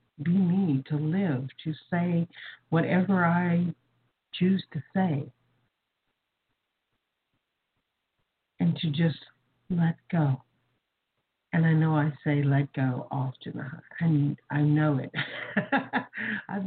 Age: 60-79